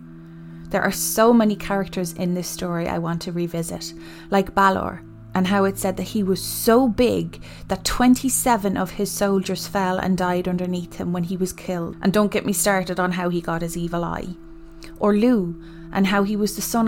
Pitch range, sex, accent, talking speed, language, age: 165-205 Hz, female, Irish, 205 wpm, English, 30-49